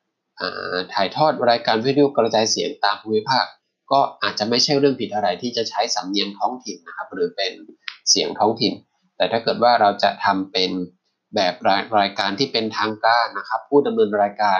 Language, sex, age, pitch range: Thai, male, 20-39, 100-125 Hz